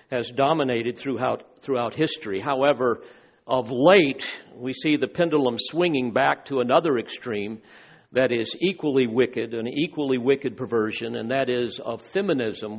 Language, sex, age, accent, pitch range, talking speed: English, male, 50-69, American, 130-165 Hz, 140 wpm